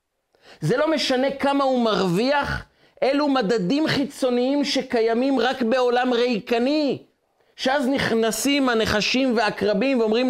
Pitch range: 170-255 Hz